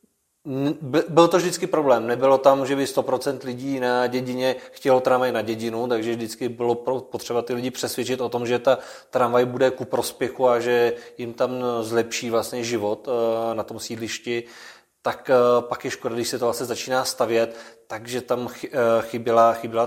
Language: Czech